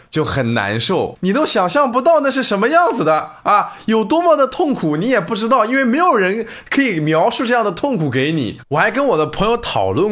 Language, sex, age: Chinese, male, 20-39